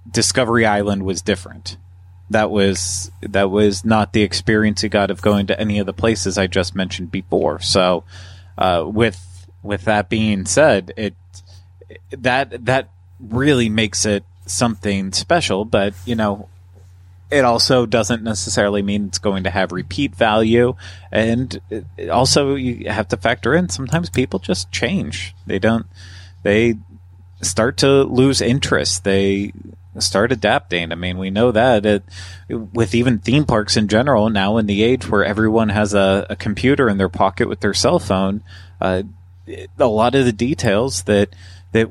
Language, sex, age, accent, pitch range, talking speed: English, male, 30-49, American, 95-115 Hz, 160 wpm